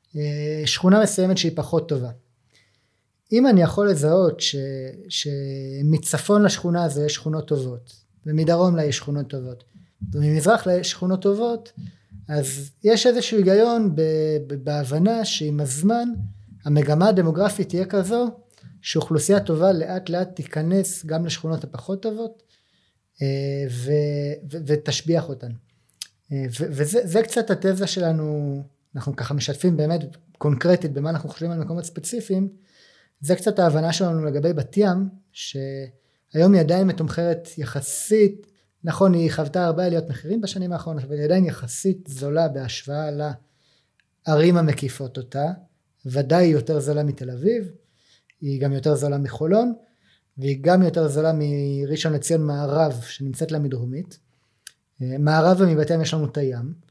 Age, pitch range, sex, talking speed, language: 30-49, 140-180 Hz, male, 130 wpm, Hebrew